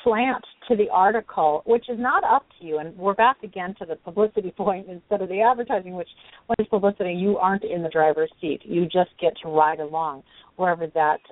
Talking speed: 210 wpm